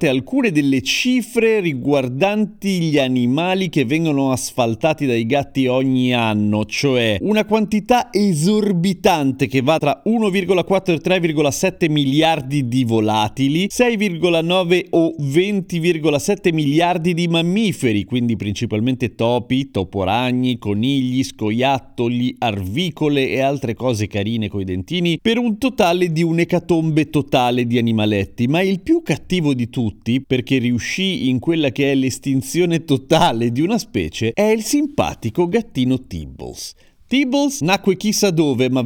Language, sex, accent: Italian, male, native